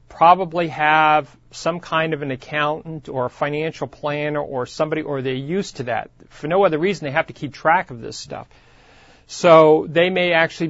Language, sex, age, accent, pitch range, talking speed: English, male, 40-59, American, 140-175 Hz, 190 wpm